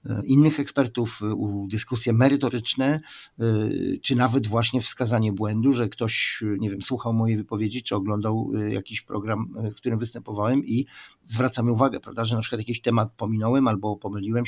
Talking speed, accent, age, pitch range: 150 wpm, native, 50-69, 110-130 Hz